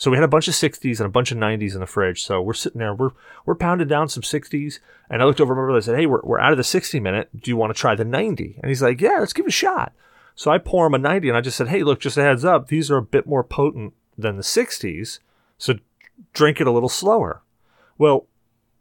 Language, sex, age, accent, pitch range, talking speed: English, male, 30-49, American, 110-145 Hz, 280 wpm